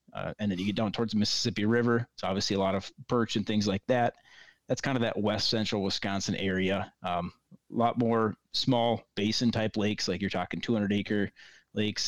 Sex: male